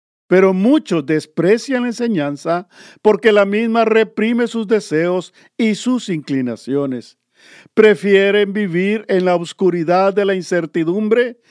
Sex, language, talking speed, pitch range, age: male, Spanish, 115 wpm, 170-220 Hz, 50-69